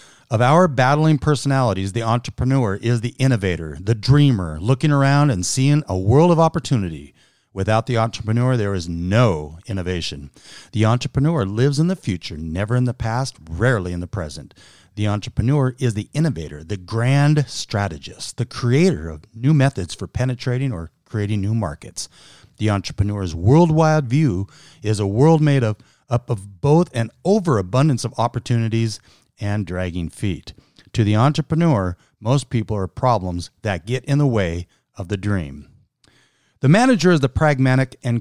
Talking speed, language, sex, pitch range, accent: 155 wpm, English, male, 100-135 Hz, American